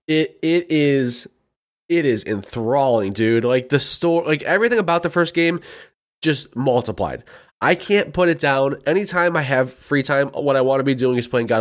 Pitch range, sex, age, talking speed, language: 110-155 Hz, male, 20-39, 190 wpm, English